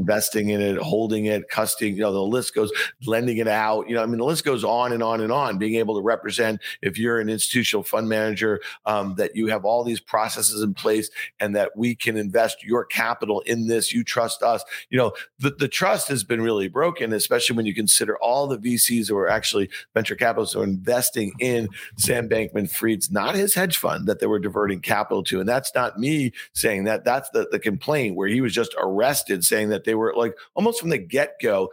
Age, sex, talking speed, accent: 50-69, male, 225 wpm, American